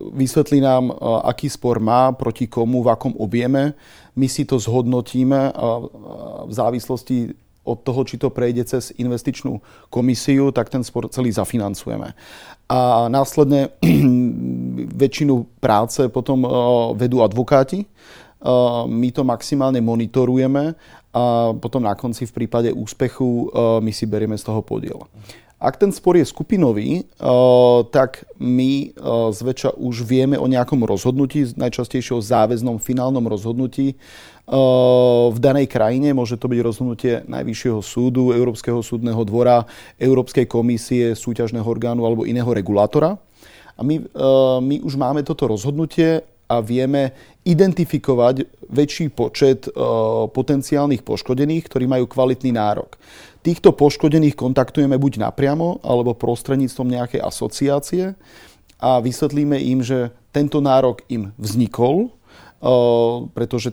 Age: 30-49